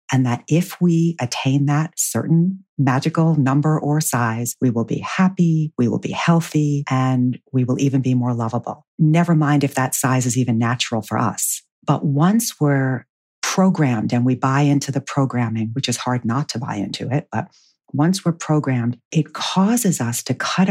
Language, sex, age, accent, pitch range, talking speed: English, female, 50-69, American, 125-150 Hz, 185 wpm